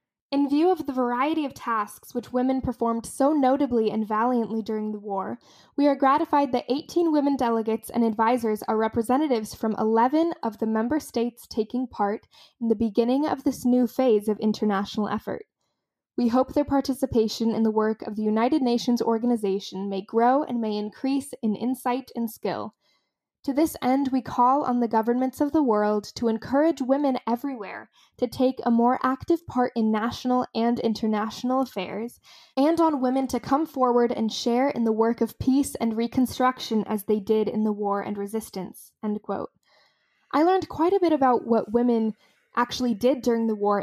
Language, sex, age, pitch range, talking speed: English, female, 10-29, 215-260 Hz, 180 wpm